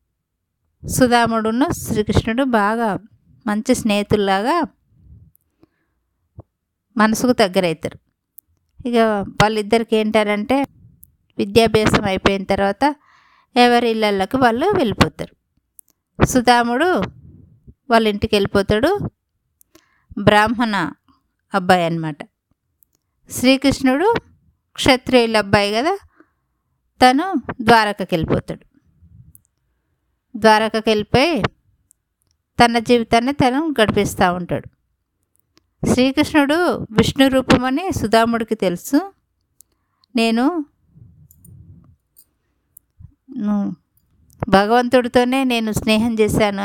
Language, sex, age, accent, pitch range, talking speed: Telugu, female, 20-39, native, 195-250 Hz, 60 wpm